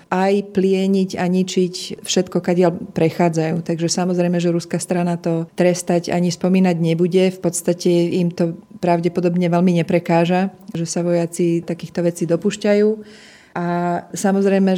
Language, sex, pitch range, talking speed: Slovak, female, 170-185 Hz, 135 wpm